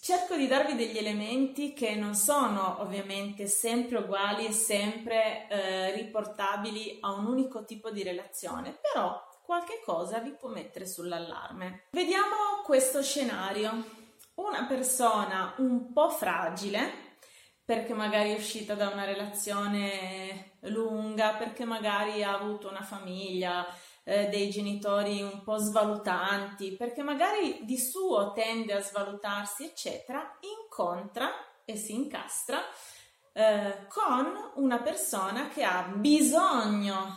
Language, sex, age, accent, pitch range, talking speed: Italian, female, 30-49, native, 200-255 Hz, 120 wpm